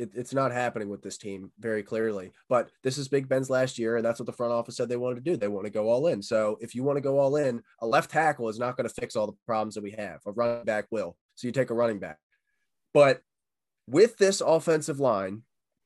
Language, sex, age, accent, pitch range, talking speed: English, male, 20-39, American, 120-155 Hz, 260 wpm